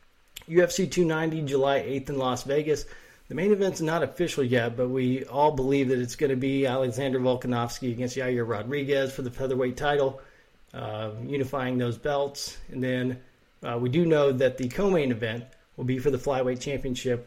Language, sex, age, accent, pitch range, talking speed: English, male, 40-59, American, 125-145 Hz, 175 wpm